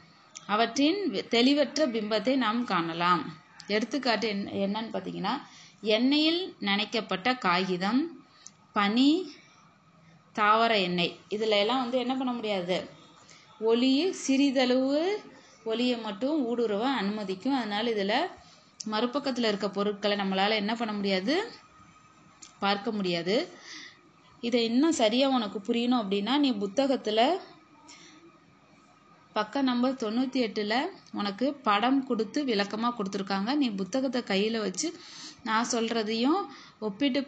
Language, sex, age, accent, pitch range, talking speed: Tamil, female, 20-39, native, 205-270 Hz, 95 wpm